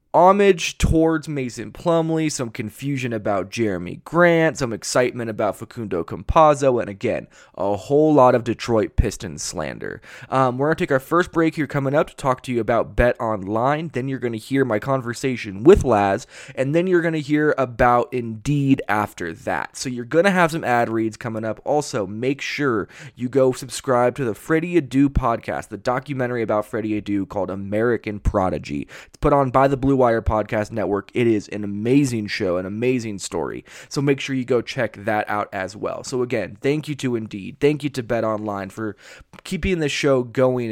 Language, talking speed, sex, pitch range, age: English, 195 wpm, male, 110-140 Hz, 20-39